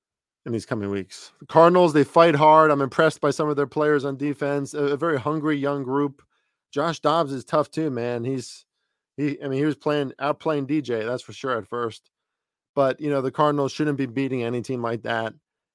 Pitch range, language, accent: 120-150 Hz, English, American